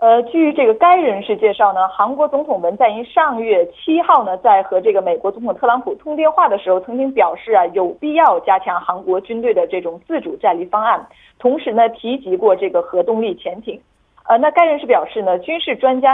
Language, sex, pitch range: Korean, female, 190-310 Hz